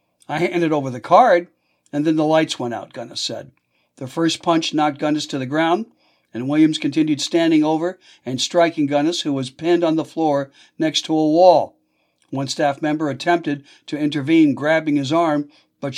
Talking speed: 185 wpm